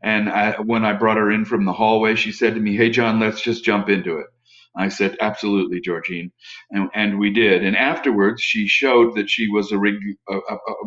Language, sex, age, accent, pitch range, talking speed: English, male, 50-69, American, 100-120 Hz, 215 wpm